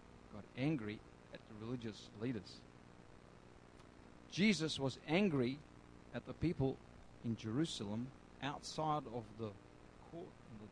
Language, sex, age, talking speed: English, male, 50-69, 100 wpm